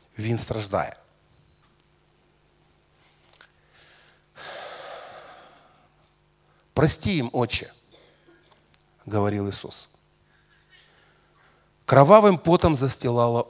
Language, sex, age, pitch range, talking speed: Russian, male, 50-69, 110-180 Hz, 50 wpm